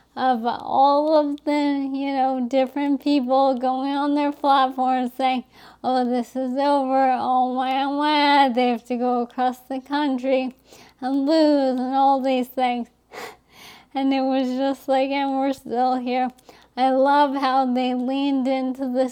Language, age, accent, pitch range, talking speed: English, 20-39, American, 255-280 Hz, 155 wpm